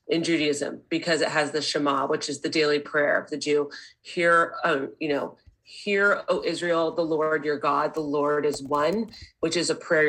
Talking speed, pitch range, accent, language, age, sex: 200 wpm, 155-200 Hz, American, English, 30-49, female